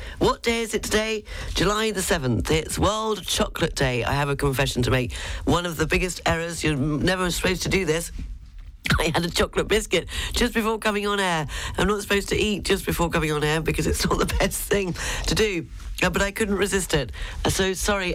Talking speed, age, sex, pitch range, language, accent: 210 wpm, 40-59, female, 140-200 Hz, English, British